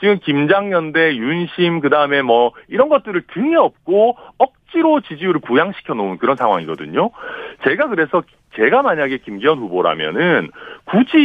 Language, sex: Korean, male